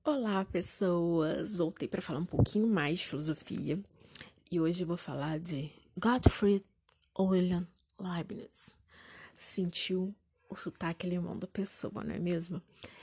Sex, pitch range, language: female, 170-195 Hz, Portuguese